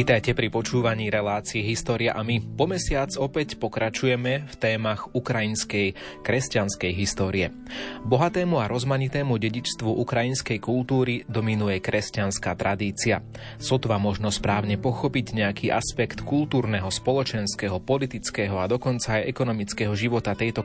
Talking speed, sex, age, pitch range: 115 wpm, male, 30-49, 105-125 Hz